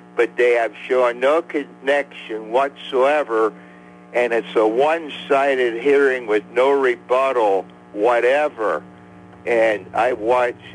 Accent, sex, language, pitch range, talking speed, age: American, male, English, 100-130 Hz, 105 wpm, 60-79